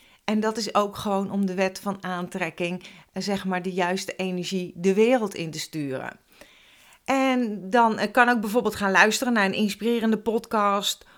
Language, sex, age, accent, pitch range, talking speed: Dutch, female, 40-59, Dutch, 200-245 Hz, 165 wpm